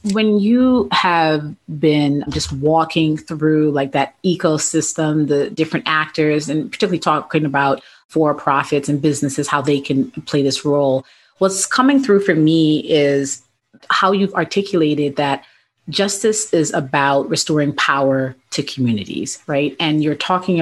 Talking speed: 135 wpm